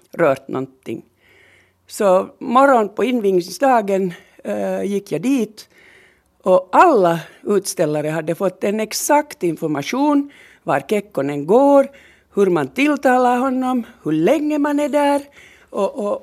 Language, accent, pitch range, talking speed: Swedish, Finnish, 175-255 Hz, 120 wpm